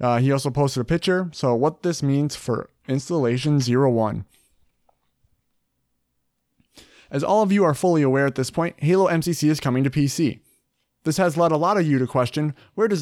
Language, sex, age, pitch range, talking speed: English, male, 30-49, 130-170 Hz, 185 wpm